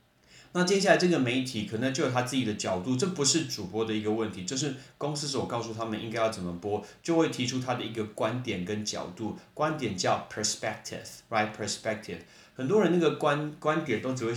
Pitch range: 105-130 Hz